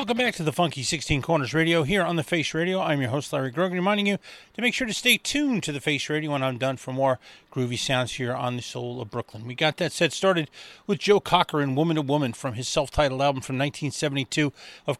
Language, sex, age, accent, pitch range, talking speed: English, male, 30-49, American, 130-170 Hz, 250 wpm